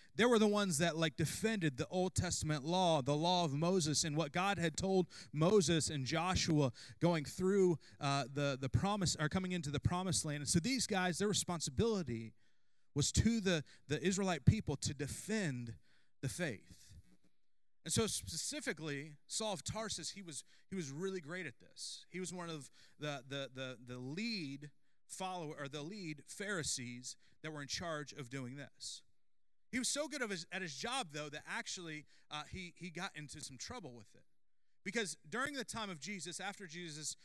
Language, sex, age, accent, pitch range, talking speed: English, male, 30-49, American, 145-195 Hz, 185 wpm